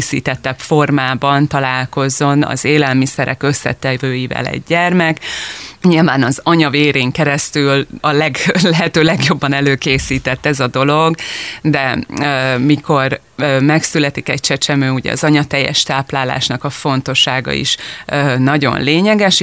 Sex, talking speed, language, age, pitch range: female, 110 wpm, Hungarian, 30-49, 135-160 Hz